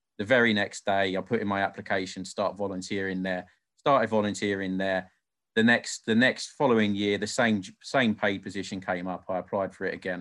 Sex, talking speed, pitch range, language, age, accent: male, 195 wpm, 100-115 Hz, English, 30-49, British